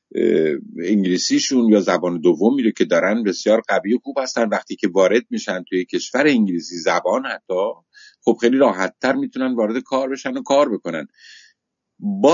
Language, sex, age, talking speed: Persian, male, 50-69, 155 wpm